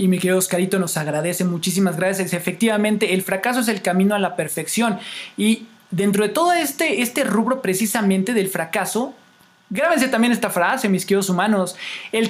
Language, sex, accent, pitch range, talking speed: Spanish, male, Mexican, 200-260 Hz, 170 wpm